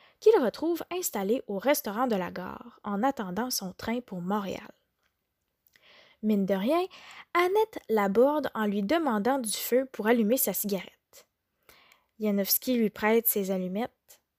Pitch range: 210-275 Hz